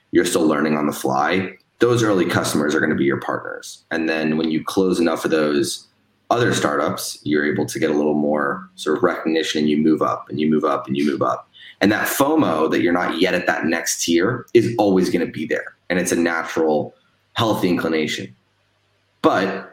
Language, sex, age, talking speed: English, male, 20-39, 210 wpm